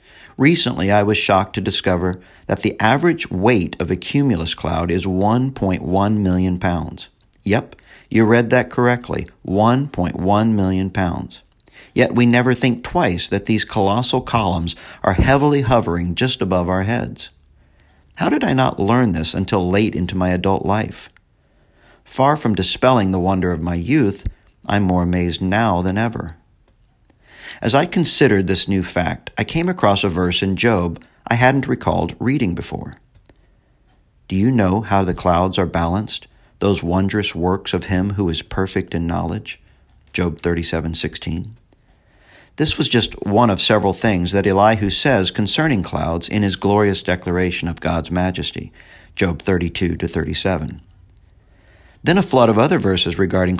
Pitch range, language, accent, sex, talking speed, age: 90-110 Hz, English, American, male, 150 wpm, 50-69